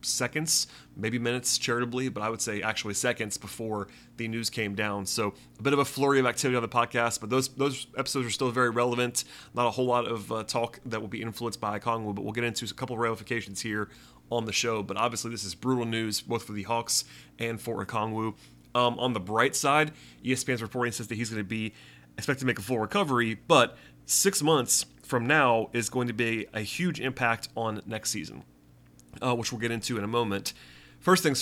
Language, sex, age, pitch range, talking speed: English, male, 30-49, 105-125 Hz, 220 wpm